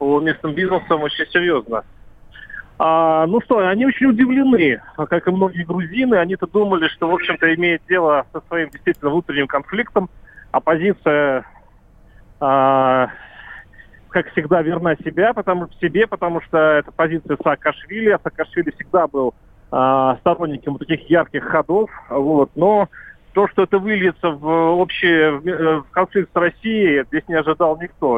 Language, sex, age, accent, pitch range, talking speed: Russian, male, 40-59, native, 145-180 Hz, 140 wpm